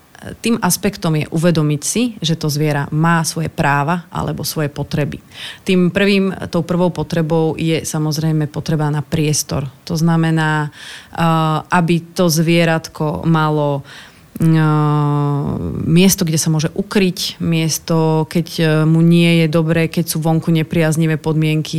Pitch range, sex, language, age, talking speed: 150-170 Hz, female, Slovak, 30-49, 125 wpm